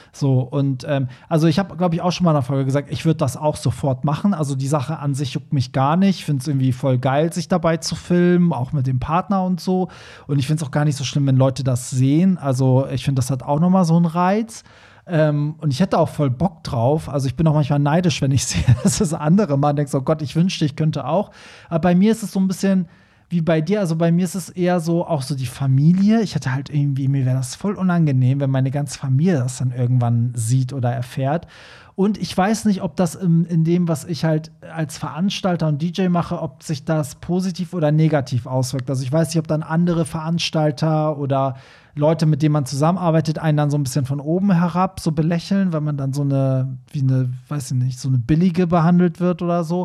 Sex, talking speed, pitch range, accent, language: male, 245 wpm, 135-175 Hz, German, German